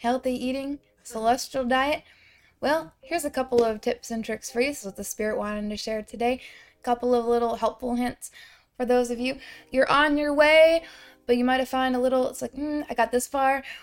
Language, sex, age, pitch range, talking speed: English, female, 10-29, 225-265 Hz, 220 wpm